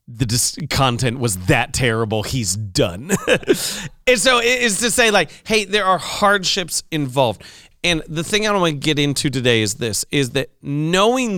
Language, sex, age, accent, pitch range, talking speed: English, male, 40-59, American, 120-160 Hz, 175 wpm